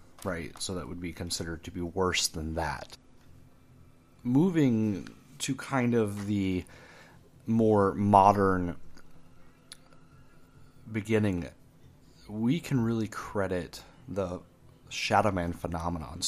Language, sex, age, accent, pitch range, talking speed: English, male, 30-49, American, 90-110 Hz, 100 wpm